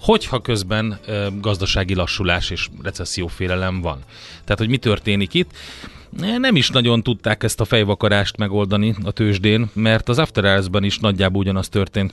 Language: Hungarian